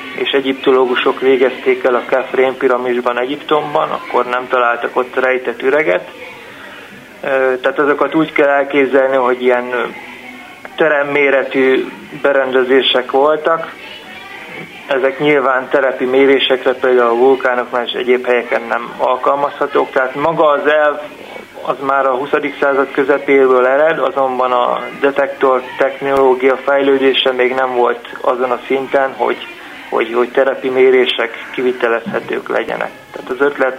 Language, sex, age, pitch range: Hungarian, male, 30-49, 125-140 Hz